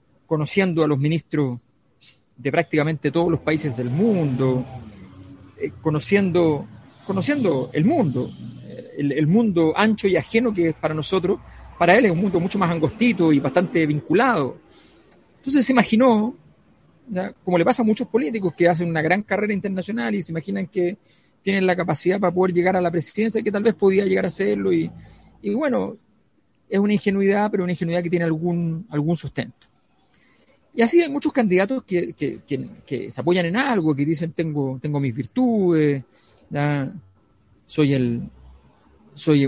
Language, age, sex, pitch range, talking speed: Spanish, 40-59, male, 150-195 Hz, 170 wpm